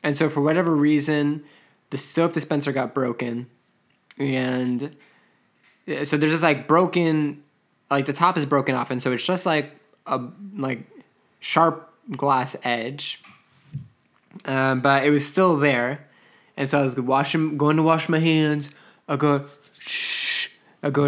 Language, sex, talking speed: English, male, 150 wpm